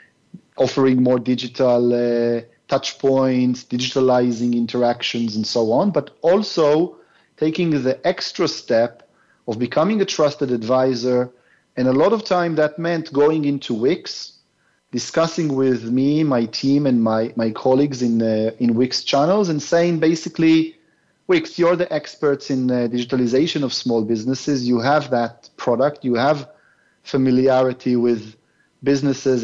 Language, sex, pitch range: English, male, 120-150 Hz